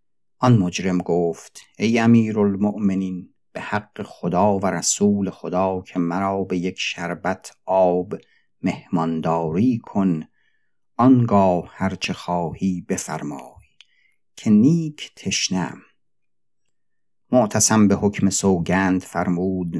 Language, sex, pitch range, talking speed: Persian, male, 85-105 Hz, 95 wpm